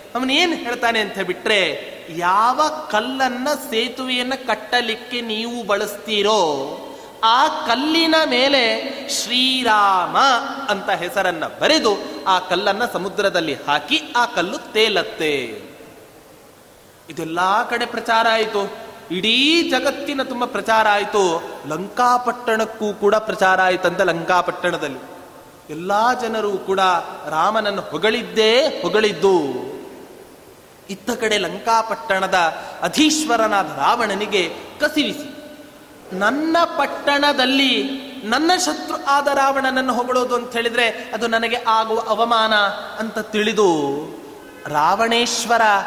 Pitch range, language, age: 200-265 Hz, Kannada, 30-49